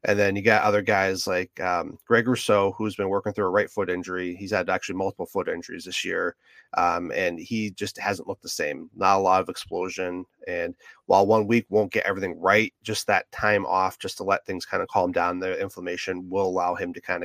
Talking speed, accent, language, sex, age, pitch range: 230 wpm, American, English, male, 30-49, 95-110 Hz